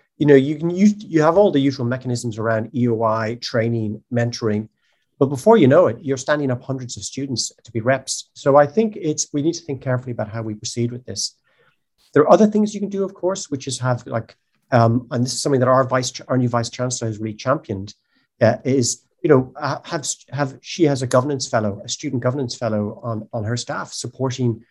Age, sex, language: 40-59, male, English